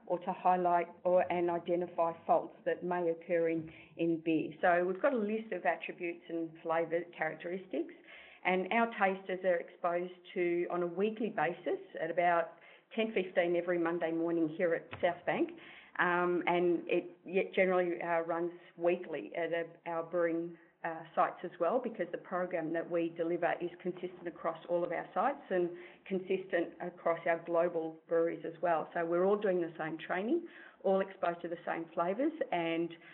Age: 40-59